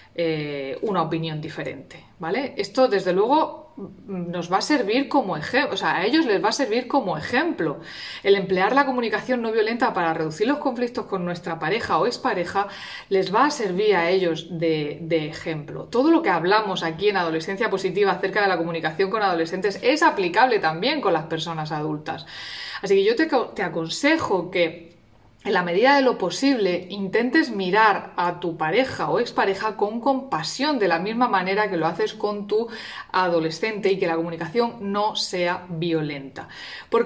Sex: female